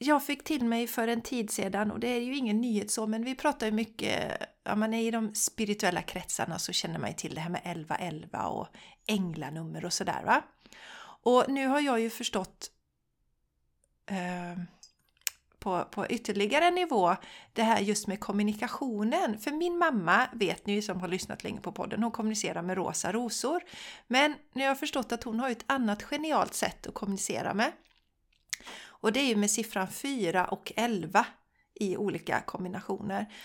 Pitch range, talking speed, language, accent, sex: 190-245 Hz, 180 wpm, Swedish, native, female